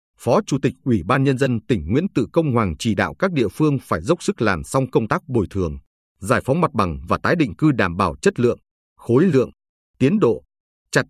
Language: Vietnamese